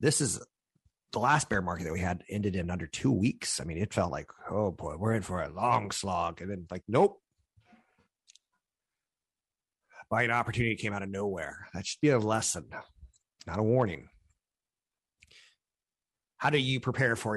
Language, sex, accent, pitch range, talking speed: English, male, American, 90-115 Hz, 175 wpm